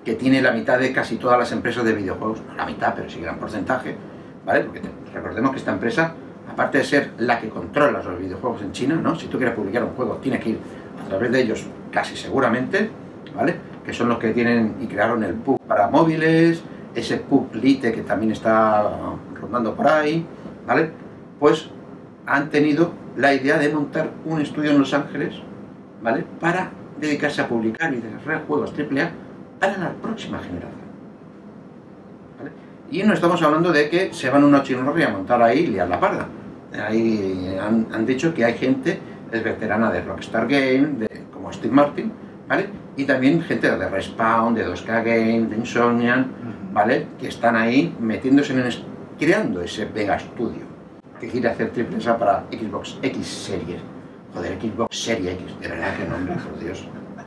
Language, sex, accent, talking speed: Spanish, male, Spanish, 180 wpm